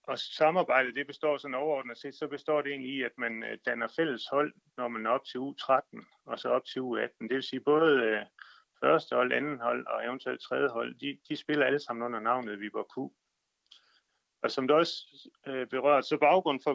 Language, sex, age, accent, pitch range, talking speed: Danish, male, 30-49, native, 125-150 Hz, 210 wpm